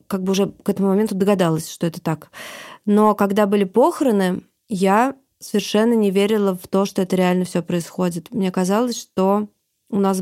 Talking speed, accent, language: 175 wpm, native, Russian